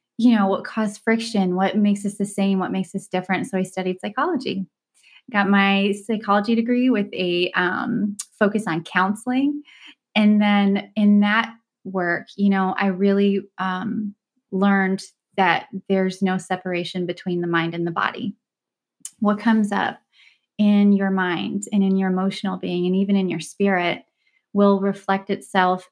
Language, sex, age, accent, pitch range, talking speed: English, female, 20-39, American, 185-210 Hz, 155 wpm